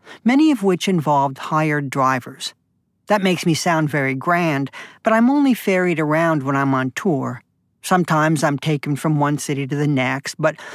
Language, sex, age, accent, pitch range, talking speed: English, male, 50-69, American, 140-175 Hz, 175 wpm